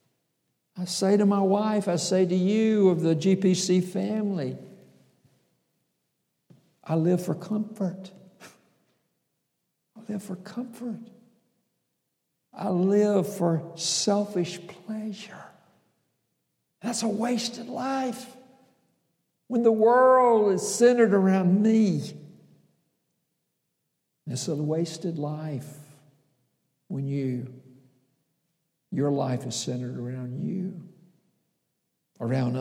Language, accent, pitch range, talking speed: English, American, 140-205 Hz, 90 wpm